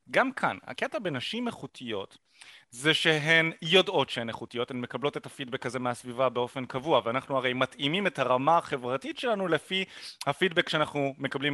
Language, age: Hebrew, 30-49